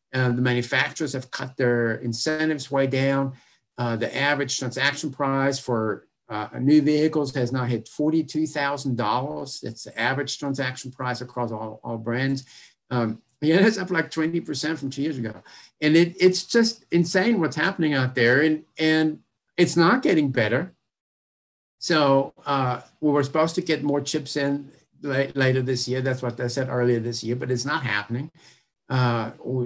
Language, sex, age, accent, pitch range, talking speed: English, male, 50-69, American, 120-145 Hz, 165 wpm